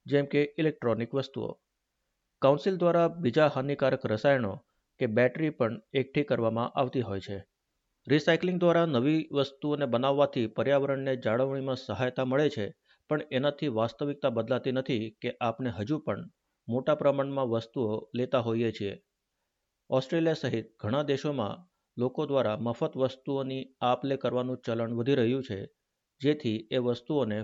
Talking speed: 130 wpm